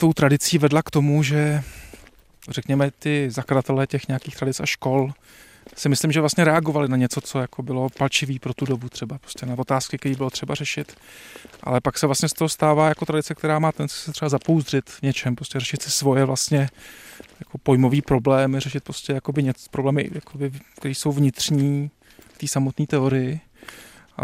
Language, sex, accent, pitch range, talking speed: Czech, male, native, 135-150 Hz, 180 wpm